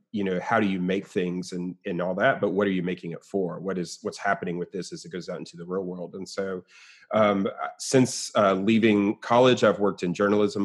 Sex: male